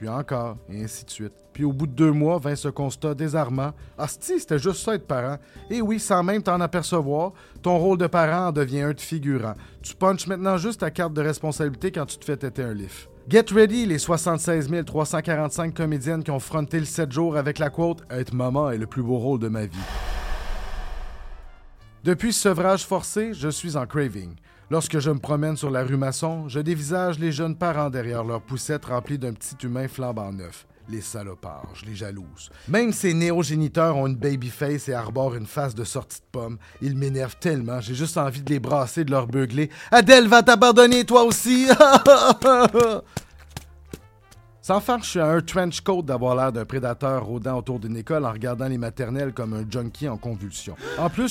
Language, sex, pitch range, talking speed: French, male, 120-165 Hz, 200 wpm